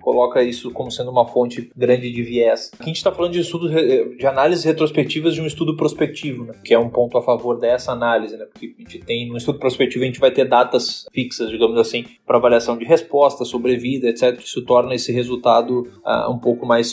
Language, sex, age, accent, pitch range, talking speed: Portuguese, male, 20-39, Brazilian, 120-150 Hz, 220 wpm